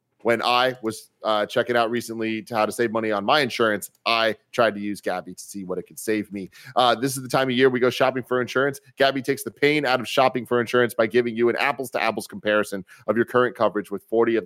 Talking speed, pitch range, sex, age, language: 255 wpm, 105-125 Hz, male, 30-49, English